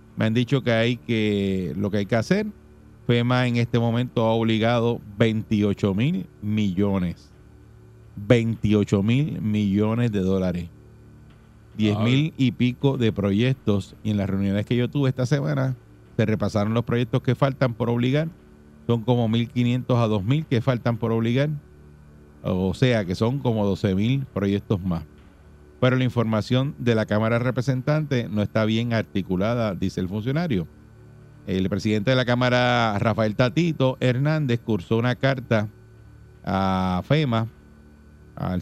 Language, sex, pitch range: Spanish, male, 100-125 Hz